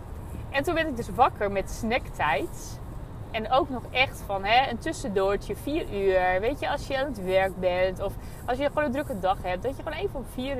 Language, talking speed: Dutch, 225 wpm